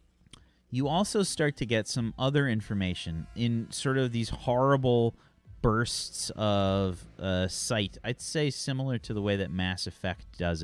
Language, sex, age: English, male, 30-49